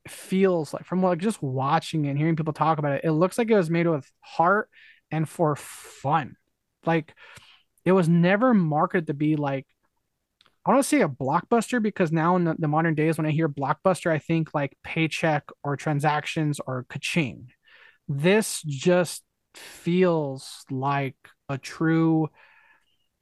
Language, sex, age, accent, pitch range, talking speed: English, male, 20-39, American, 145-180 Hz, 155 wpm